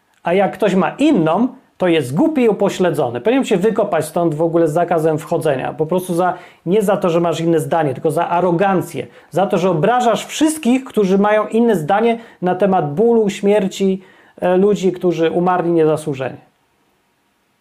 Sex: male